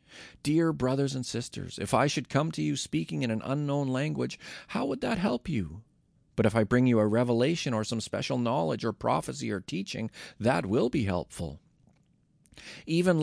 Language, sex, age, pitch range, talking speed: English, male, 40-59, 105-155 Hz, 180 wpm